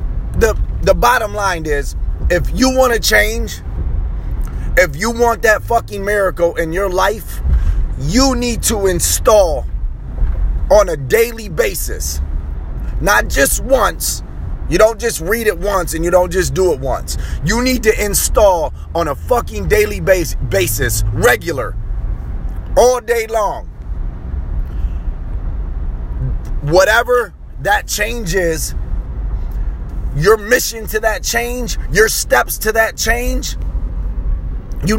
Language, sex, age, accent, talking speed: English, male, 30-49, American, 125 wpm